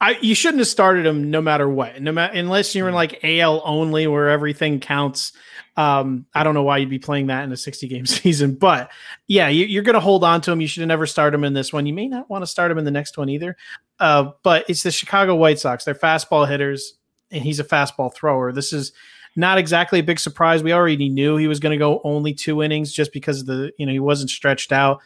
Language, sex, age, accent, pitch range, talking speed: English, male, 30-49, American, 140-170 Hz, 260 wpm